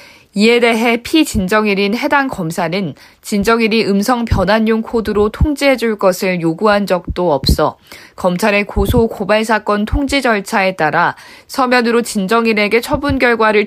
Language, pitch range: Korean, 190-235 Hz